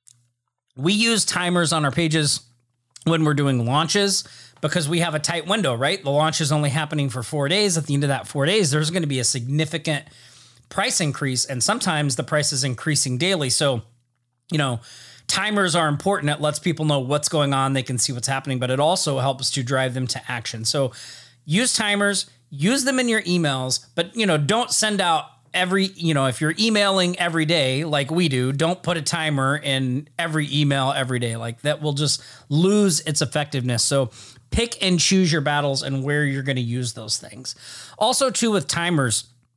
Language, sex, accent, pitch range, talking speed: English, male, American, 135-175 Hz, 200 wpm